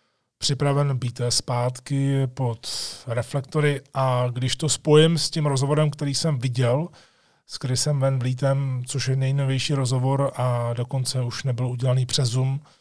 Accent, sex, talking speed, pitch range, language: native, male, 135 wpm, 120-140 Hz, Czech